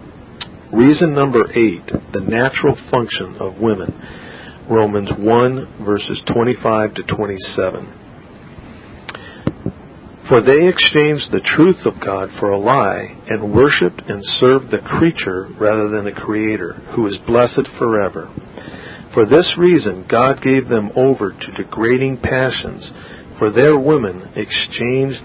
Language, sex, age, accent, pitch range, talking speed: English, male, 50-69, American, 105-135 Hz, 125 wpm